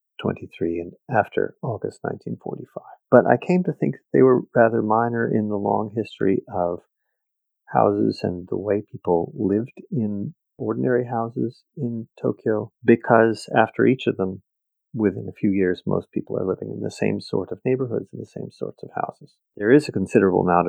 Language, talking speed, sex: English, 175 wpm, male